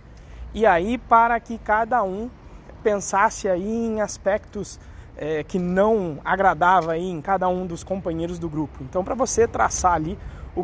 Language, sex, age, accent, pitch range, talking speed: Portuguese, male, 20-39, Brazilian, 185-285 Hz, 145 wpm